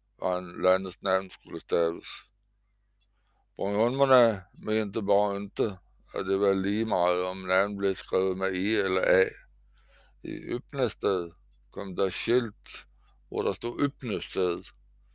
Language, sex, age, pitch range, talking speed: Danish, male, 60-79, 90-110 Hz, 130 wpm